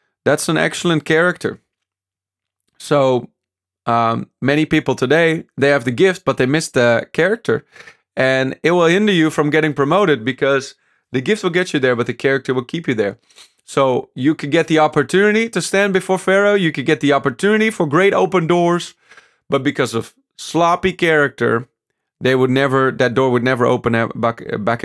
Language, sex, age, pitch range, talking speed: English, male, 30-49, 115-155 Hz, 180 wpm